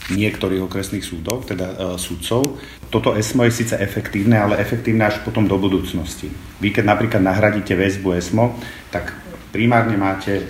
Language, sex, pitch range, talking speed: Slovak, male, 95-115 Hz, 150 wpm